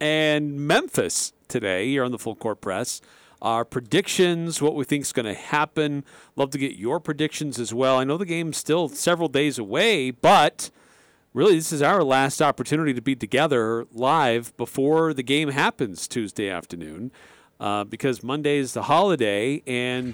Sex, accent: male, American